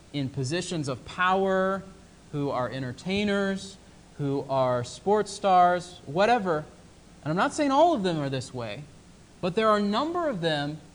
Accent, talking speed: American, 160 wpm